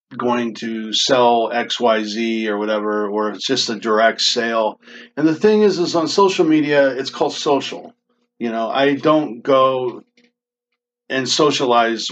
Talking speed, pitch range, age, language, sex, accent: 150 wpm, 115-165 Hz, 50-69, English, male, American